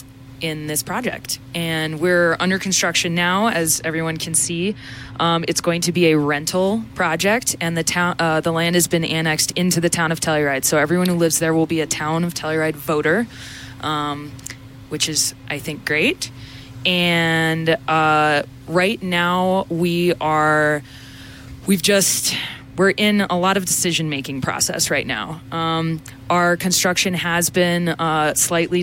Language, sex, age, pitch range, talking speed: English, female, 20-39, 150-175 Hz, 160 wpm